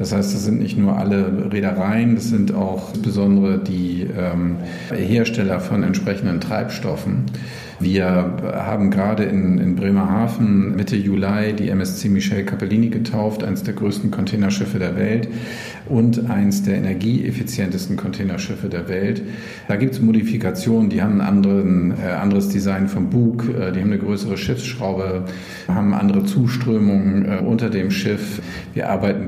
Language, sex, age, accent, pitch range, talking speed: German, male, 50-69, German, 100-115 Hz, 140 wpm